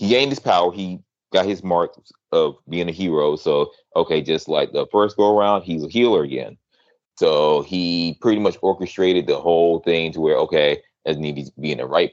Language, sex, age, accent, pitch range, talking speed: English, male, 30-49, American, 80-110 Hz, 205 wpm